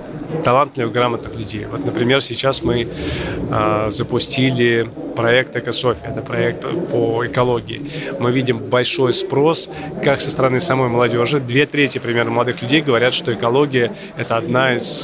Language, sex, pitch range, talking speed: Russian, male, 115-140 Hz, 140 wpm